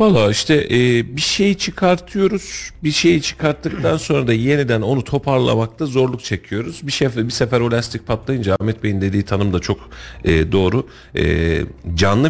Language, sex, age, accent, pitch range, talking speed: Turkish, male, 40-59, native, 95-130 Hz, 160 wpm